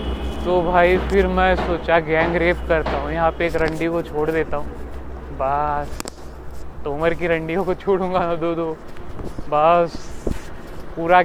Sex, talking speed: male, 125 wpm